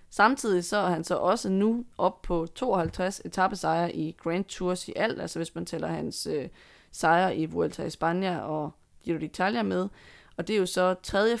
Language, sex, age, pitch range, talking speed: Danish, female, 20-39, 170-205 Hz, 195 wpm